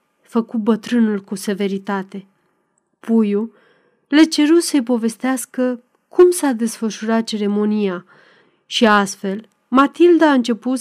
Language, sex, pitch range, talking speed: Romanian, female, 205-255 Hz, 100 wpm